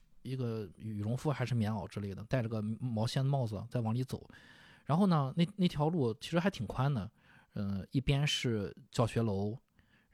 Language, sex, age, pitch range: Chinese, male, 20-39, 110-150 Hz